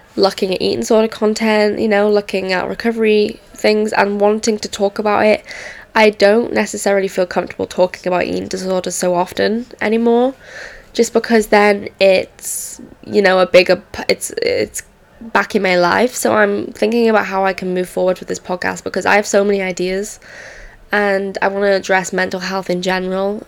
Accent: British